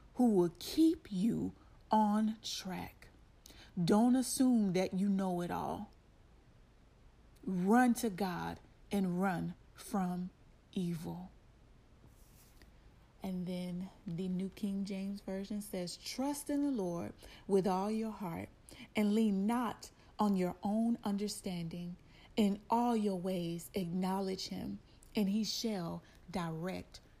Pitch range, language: 175-210 Hz, English